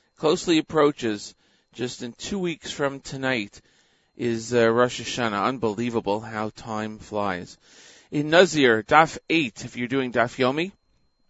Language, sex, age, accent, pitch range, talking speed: English, male, 40-59, American, 115-135 Hz, 135 wpm